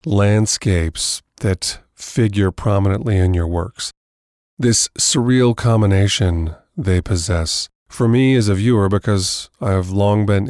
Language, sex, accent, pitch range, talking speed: English, male, American, 95-115 Hz, 125 wpm